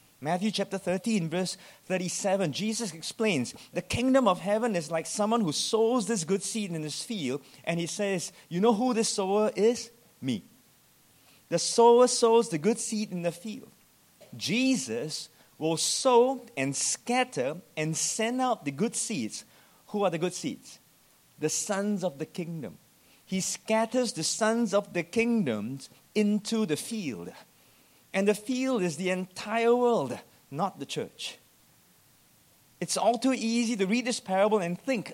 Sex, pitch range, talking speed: male, 155-225 Hz, 155 wpm